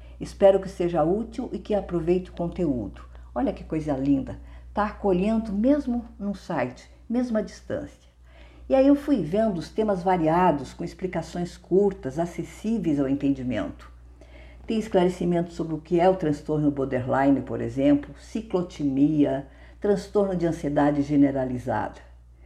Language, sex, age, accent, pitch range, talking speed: Portuguese, female, 50-69, Brazilian, 135-195 Hz, 135 wpm